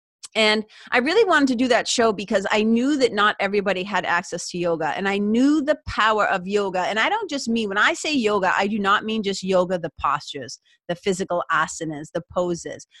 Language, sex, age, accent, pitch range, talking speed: English, female, 30-49, American, 180-220 Hz, 215 wpm